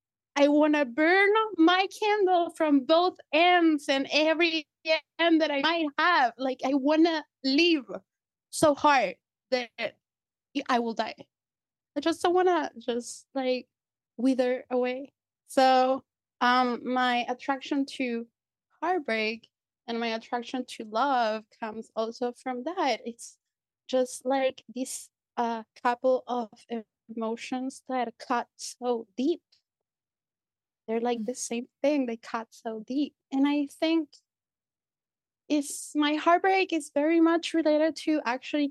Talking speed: 130 wpm